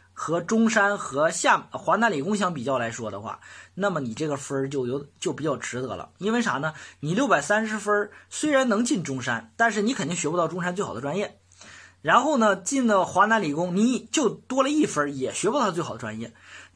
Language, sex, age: Chinese, male, 20-39